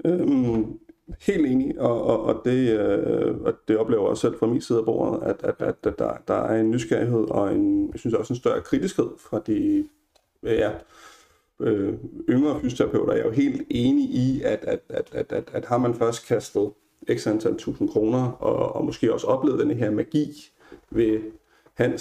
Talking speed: 195 wpm